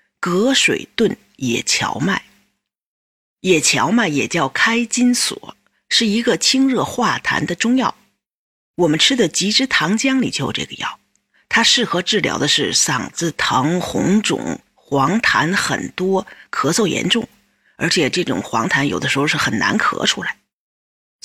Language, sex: Chinese, female